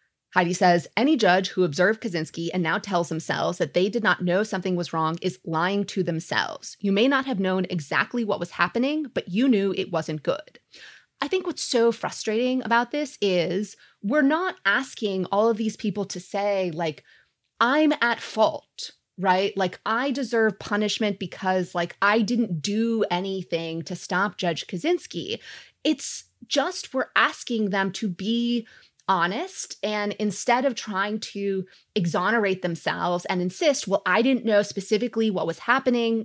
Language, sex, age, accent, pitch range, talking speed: English, female, 20-39, American, 180-235 Hz, 165 wpm